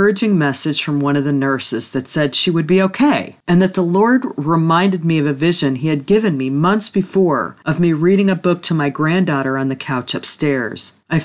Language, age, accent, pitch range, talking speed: English, 40-59, American, 140-185 Hz, 215 wpm